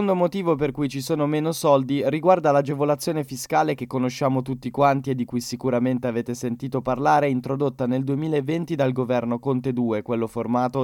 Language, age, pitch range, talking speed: Italian, 10-29, 125-155 Hz, 170 wpm